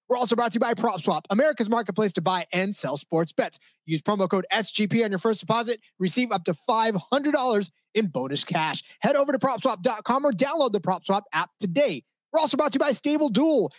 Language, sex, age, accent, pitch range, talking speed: English, male, 20-39, American, 185-250 Hz, 210 wpm